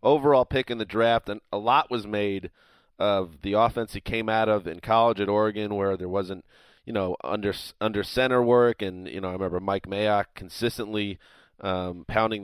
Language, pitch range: English, 100-115 Hz